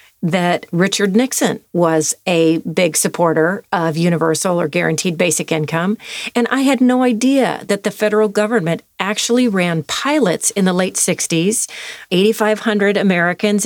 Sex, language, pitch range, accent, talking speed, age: female, English, 170-215 Hz, American, 135 wpm, 40-59